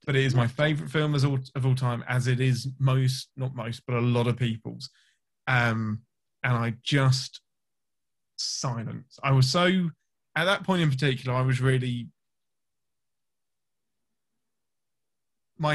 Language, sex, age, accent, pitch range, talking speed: English, male, 20-39, British, 120-145 Hz, 150 wpm